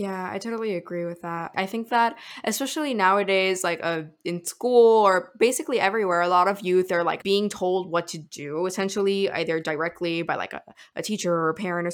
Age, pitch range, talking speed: 10-29, 170-195 Hz, 205 wpm